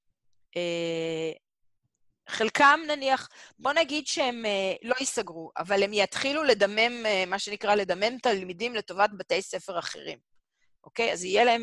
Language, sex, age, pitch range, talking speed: Hebrew, female, 40-59, 175-230 Hz, 140 wpm